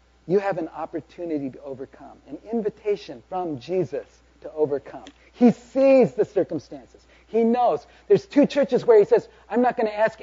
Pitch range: 135-215 Hz